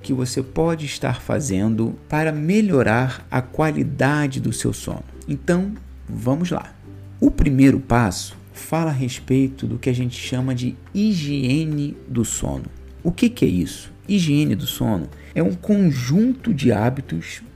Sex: male